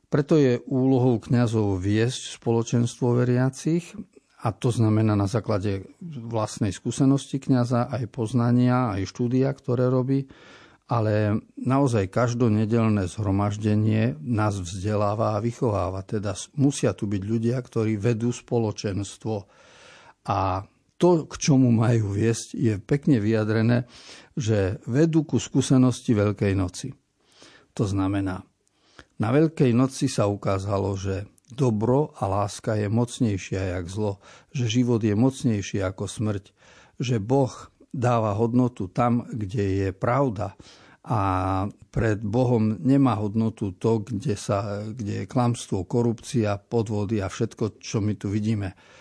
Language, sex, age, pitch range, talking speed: Slovak, male, 50-69, 105-125 Hz, 120 wpm